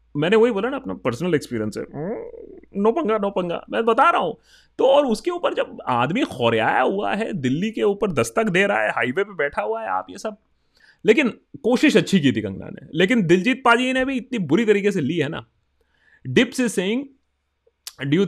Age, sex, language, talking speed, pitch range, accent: 30-49, male, Hindi, 210 wpm, 135-220 Hz, native